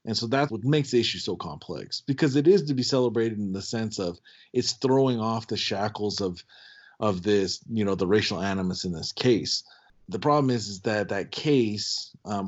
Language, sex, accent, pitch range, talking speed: English, male, American, 100-125 Hz, 205 wpm